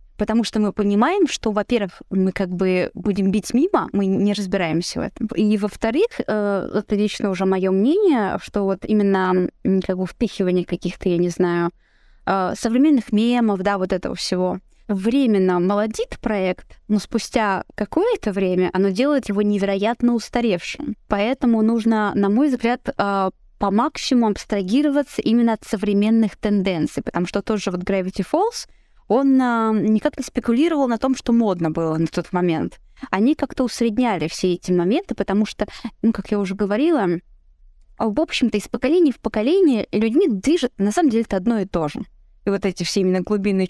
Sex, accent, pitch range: female, native, 190-235 Hz